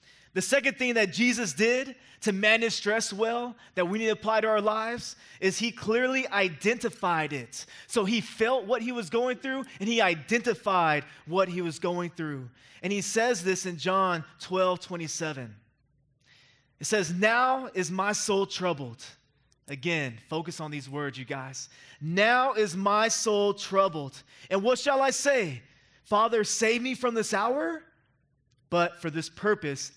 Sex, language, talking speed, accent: male, English, 160 wpm, American